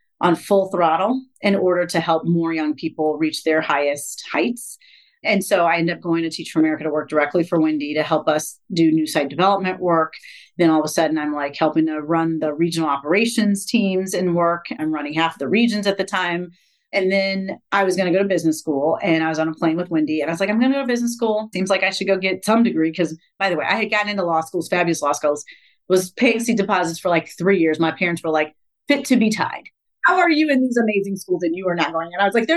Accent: American